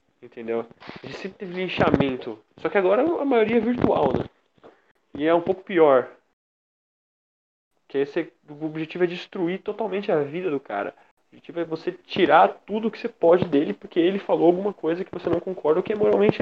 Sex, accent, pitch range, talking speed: male, Brazilian, 155-195 Hz, 190 wpm